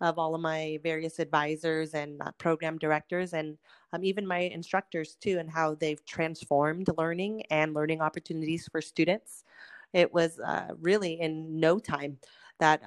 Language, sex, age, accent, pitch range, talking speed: English, female, 30-49, American, 150-170 Hz, 155 wpm